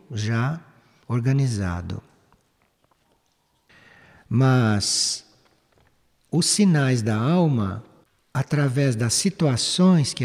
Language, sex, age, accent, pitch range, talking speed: Portuguese, male, 60-79, Brazilian, 120-165 Hz, 65 wpm